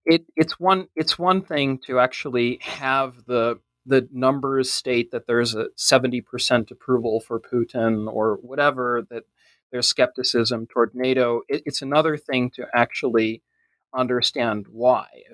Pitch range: 110-135 Hz